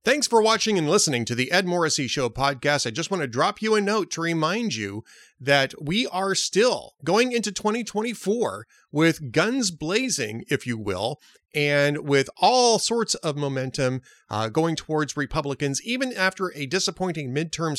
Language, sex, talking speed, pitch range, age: English, male, 170 wpm, 140-195 Hz, 30-49